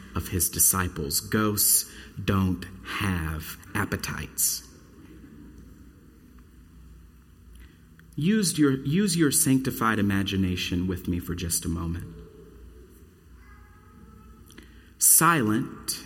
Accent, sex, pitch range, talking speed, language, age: American, male, 80-130 Hz, 75 wpm, English, 40-59